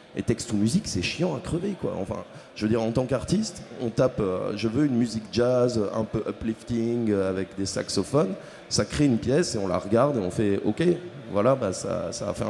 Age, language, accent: 30-49, French, French